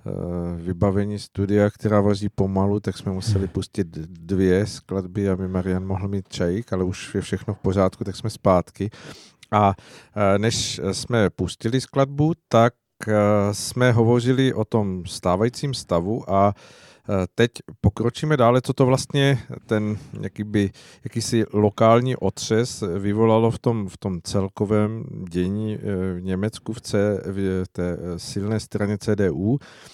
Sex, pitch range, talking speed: male, 100-115 Hz, 130 wpm